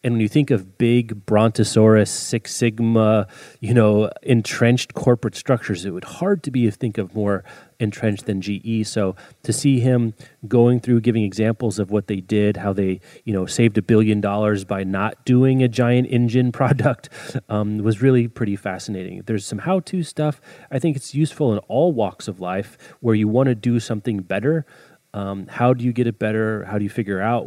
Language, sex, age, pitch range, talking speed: English, male, 30-49, 100-125 Hz, 195 wpm